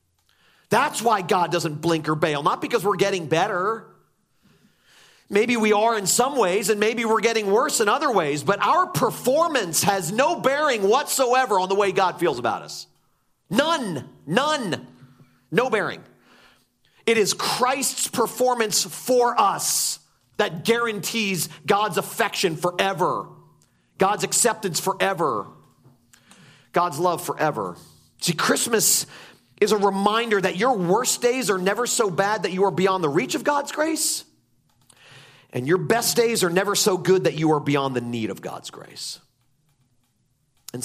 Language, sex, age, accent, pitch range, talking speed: English, male, 40-59, American, 145-220 Hz, 150 wpm